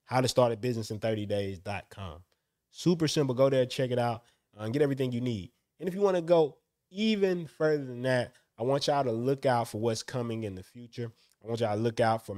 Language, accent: English, American